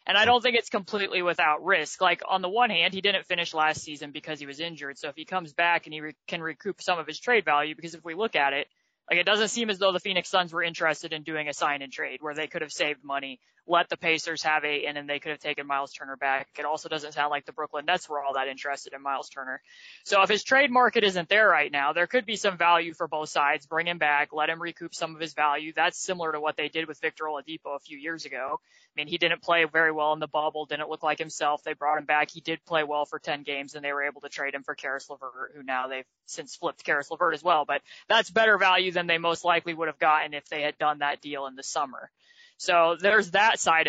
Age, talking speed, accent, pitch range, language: 20-39, 280 wpm, American, 150-180 Hz, English